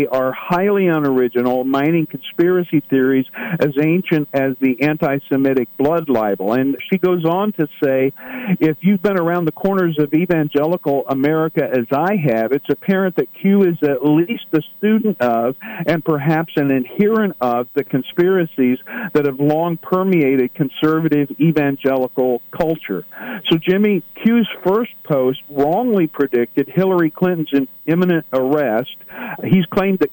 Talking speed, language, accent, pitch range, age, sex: 135 wpm, English, American, 140-175 Hz, 50-69, male